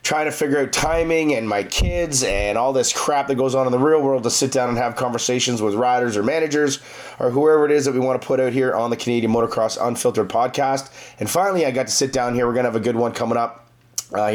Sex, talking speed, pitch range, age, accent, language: male, 270 wpm, 115-135 Hz, 30-49, American, English